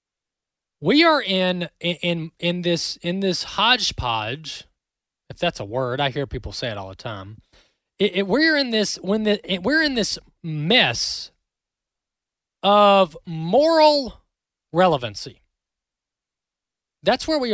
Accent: American